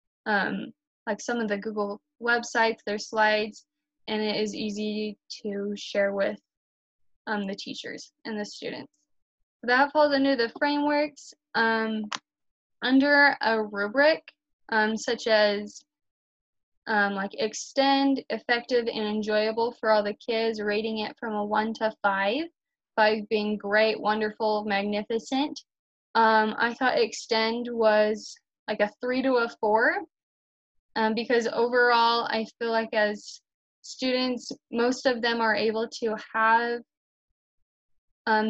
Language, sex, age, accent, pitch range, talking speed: English, female, 10-29, American, 215-245 Hz, 130 wpm